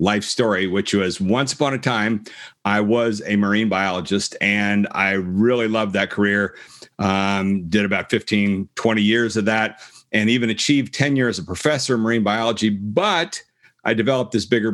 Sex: male